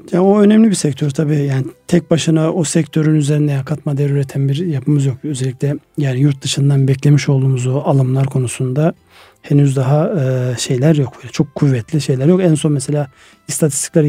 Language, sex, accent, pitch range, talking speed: Turkish, male, native, 140-160 Hz, 160 wpm